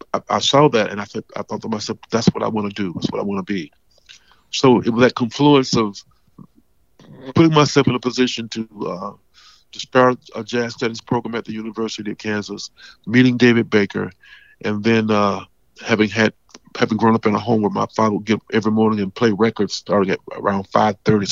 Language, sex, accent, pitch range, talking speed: English, male, American, 105-125 Hz, 210 wpm